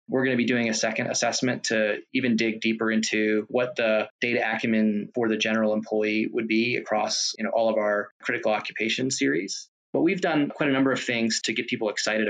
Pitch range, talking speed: 110-115 Hz, 215 wpm